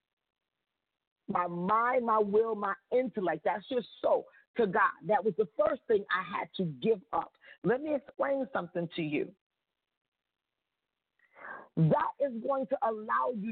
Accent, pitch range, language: American, 195-265 Hz, English